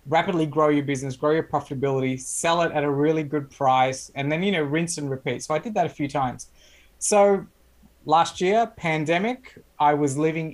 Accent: Australian